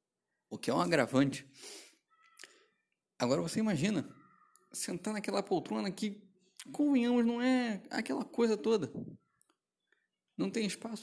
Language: Portuguese